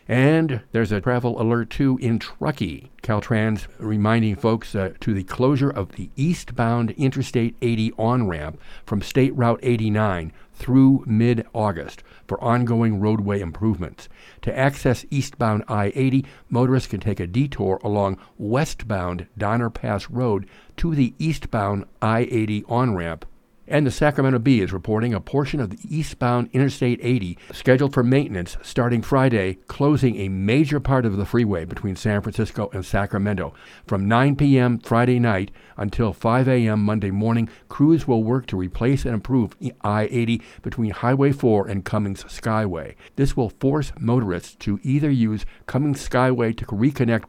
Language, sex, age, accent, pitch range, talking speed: English, male, 60-79, American, 105-130 Hz, 145 wpm